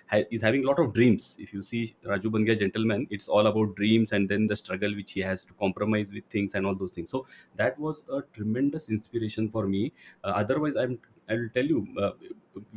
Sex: male